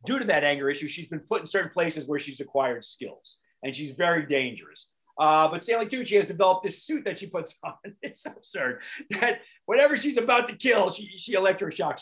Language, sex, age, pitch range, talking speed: English, male, 40-59, 160-240 Hz, 215 wpm